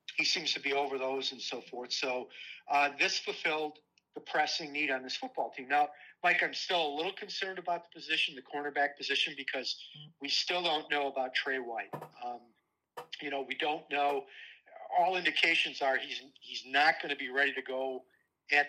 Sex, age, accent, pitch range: male, 40-59, American, 135-165 Hz